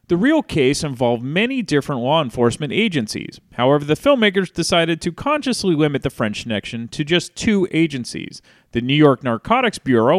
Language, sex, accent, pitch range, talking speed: English, male, American, 125-195 Hz, 165 wpm